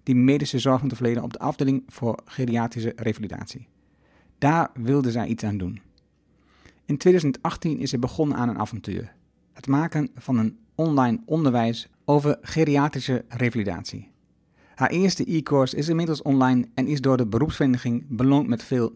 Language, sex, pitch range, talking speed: Dutch, male, 115-145 Hz, 155 wpm